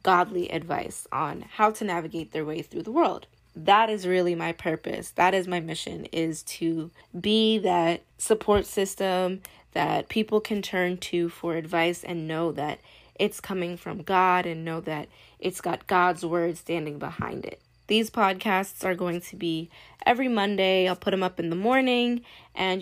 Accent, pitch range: American, 170-200 Hz